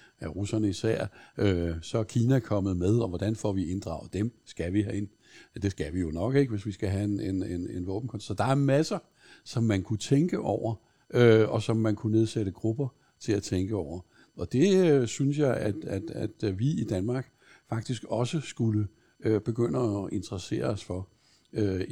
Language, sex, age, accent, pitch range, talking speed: Danish, male, 60-79, native, 100-120 Hz, 205 wpm